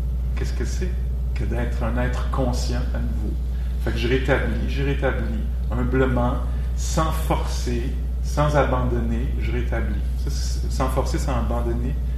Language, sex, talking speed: English, male, 140 wpm